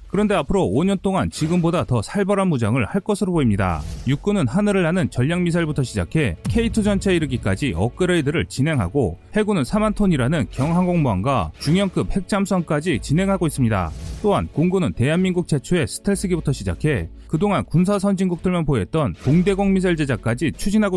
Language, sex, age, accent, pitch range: Korean, male, 30-49, native, 125-190 Hz